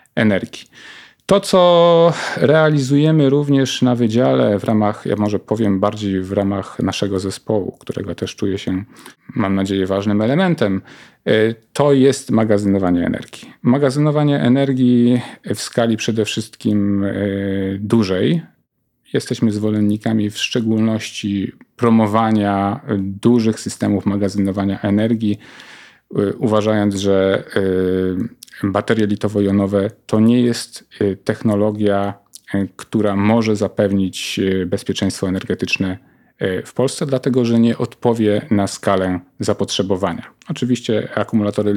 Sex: male